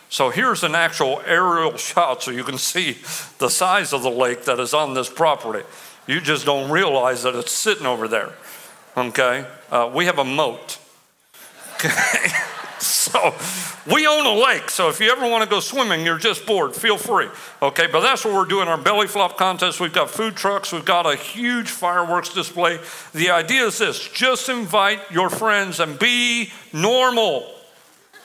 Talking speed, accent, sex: 180 wpm, American, male